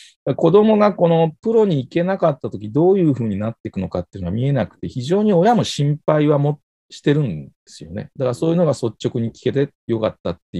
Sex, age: male, 40-59